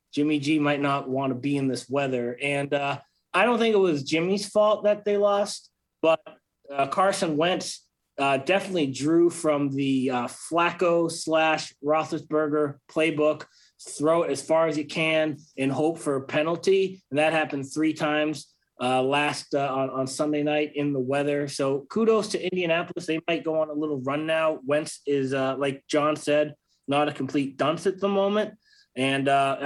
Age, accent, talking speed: 30-49, American, 180 wpm